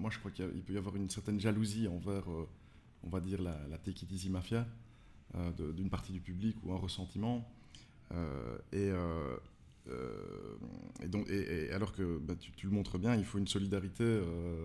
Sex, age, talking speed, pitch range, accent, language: male, 20-39, 210 wpm, 90-105 Hz, French, French